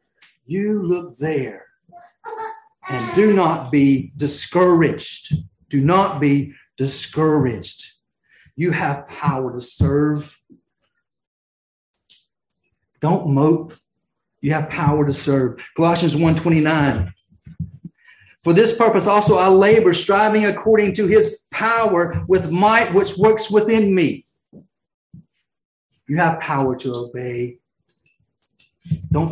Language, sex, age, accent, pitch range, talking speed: English, male, 50-69, American, 145-205 Hz, 100 wpm